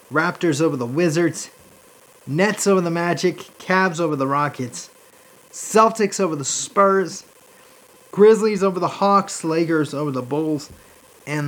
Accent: American